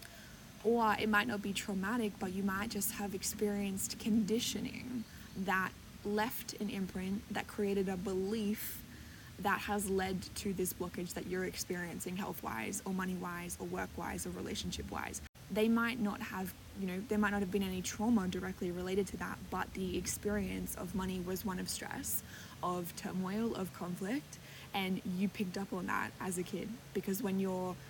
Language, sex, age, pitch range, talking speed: English, female, 20-39, 180-200 Hz, 170 wpm